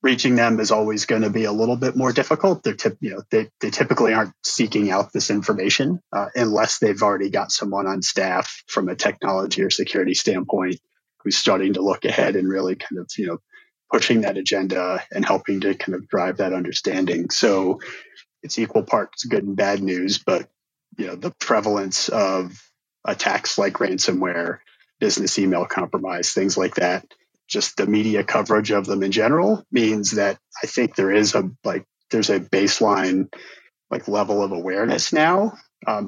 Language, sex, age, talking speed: English, male, 30-49, 180 wpm